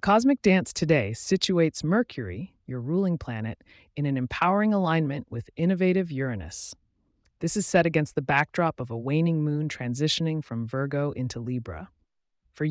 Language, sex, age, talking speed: English, female, 30-49, 150 wpm